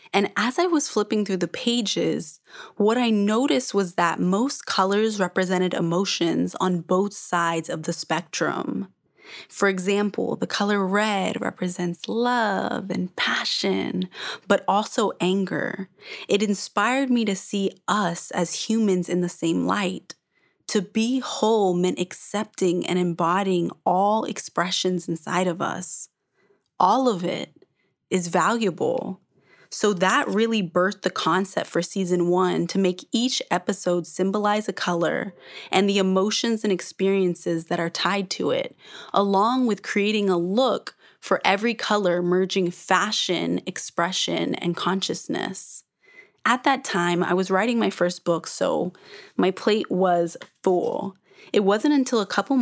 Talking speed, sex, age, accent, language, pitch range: 140 wpm, female, 20-39, American, English, 175-210 Hz